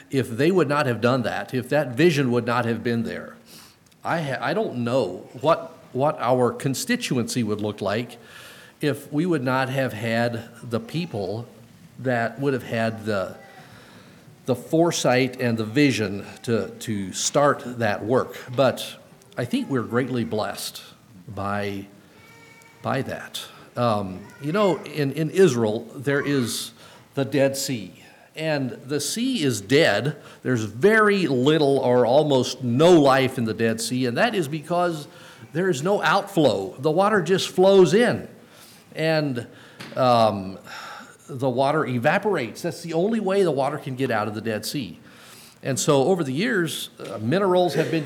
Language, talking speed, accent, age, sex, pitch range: English, 155 wpm, American, 50-69, male, 120-160 Hz